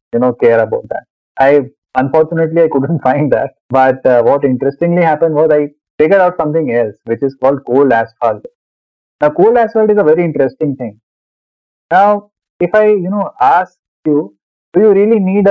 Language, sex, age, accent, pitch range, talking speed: English, male, 30-49, Indian, 125-165 Hz, 180 wpm